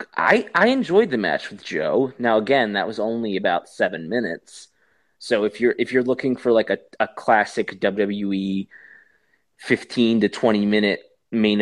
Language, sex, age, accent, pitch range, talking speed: English, male, 20-39, American, 105-140 Hz, 165 wpm